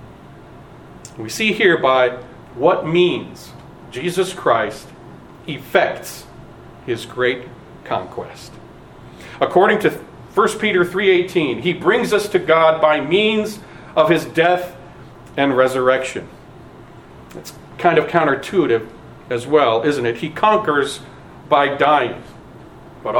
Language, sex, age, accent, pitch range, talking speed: English, male, 40-59, American, 140-195 Hz, 110 wpm